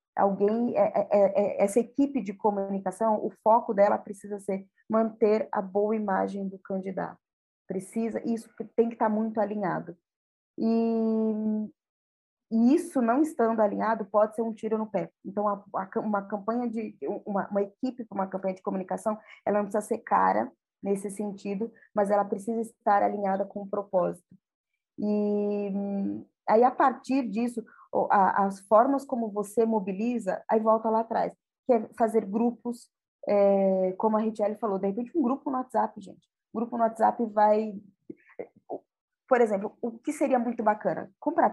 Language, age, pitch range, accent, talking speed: Portuguese, 20-39, 200-235 Hz, Brazilian, 160 wpm